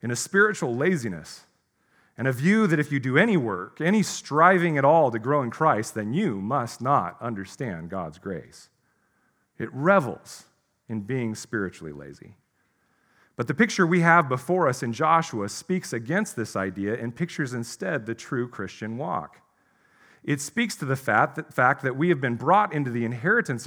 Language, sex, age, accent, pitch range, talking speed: English, male, 40-59, American, 115-165 Hz, 170 wpm